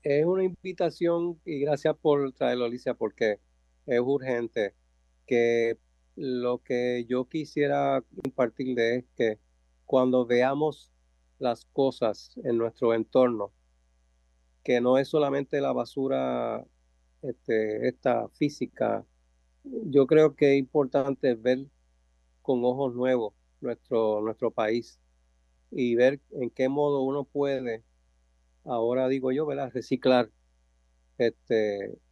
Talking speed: 110 wpm